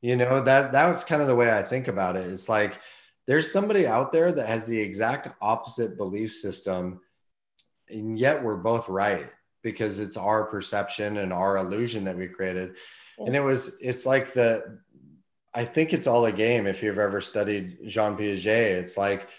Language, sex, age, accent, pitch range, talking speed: English, male, 30-49, American, 100-125 Hz, 185 wpm